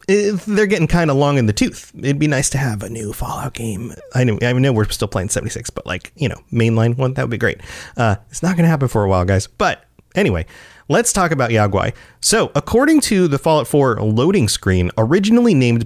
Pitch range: 110-155 Hz